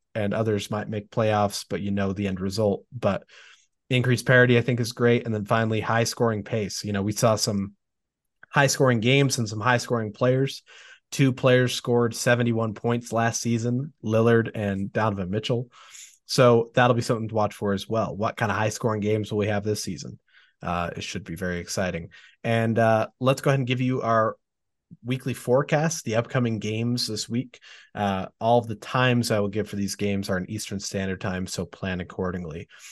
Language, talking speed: English, 195 wpm